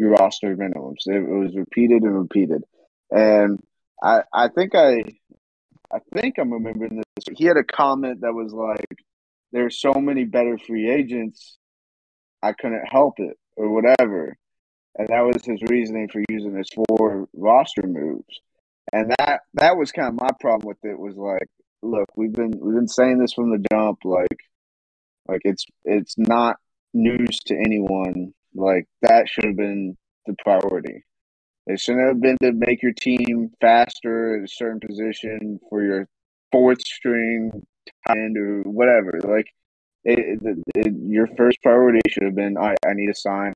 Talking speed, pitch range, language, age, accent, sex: 165 wpm, 100-120 Hz, English, 30-49, American, male